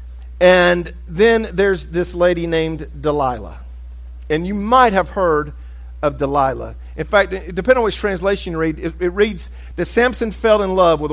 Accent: American